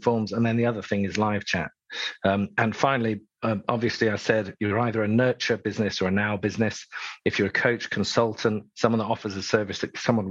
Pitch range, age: 100-115 Hz, 50-69